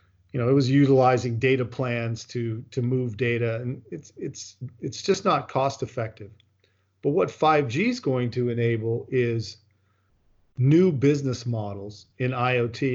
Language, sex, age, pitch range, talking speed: English, male, 40-59, 110-140 Hz, 155 wpm